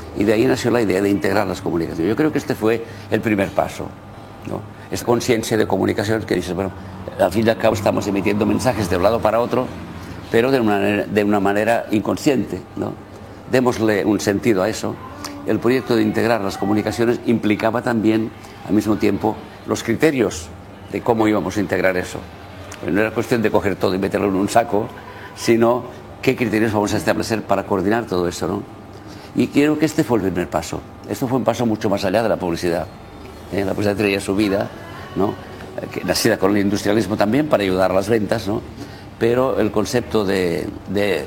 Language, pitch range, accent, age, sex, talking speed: Spanish, 100-115 Hz, Spanish, 50-69, male, 200 wpm